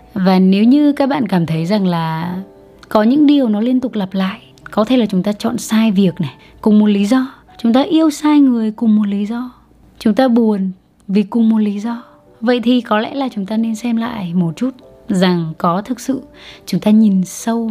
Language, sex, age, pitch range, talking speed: Vietnamese, female, 20-39, 180-225 Hz, 225 wpm